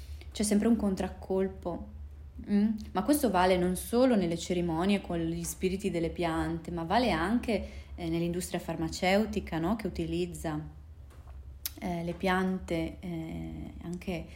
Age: 20-39